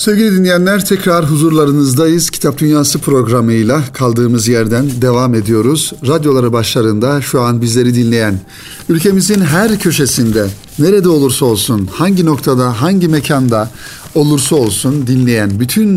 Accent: native